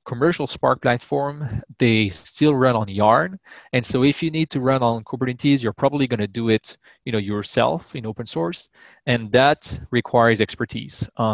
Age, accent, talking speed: 20-39, Canadian, 180 wpm